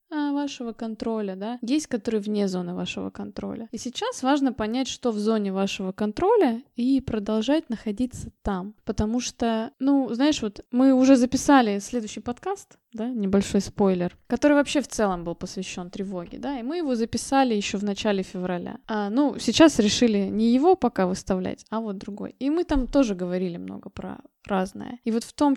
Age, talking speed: 20-39, 170 wpm